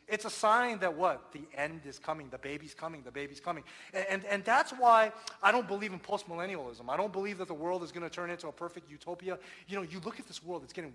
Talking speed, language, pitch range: 265 wpm, English, 155-220 Hz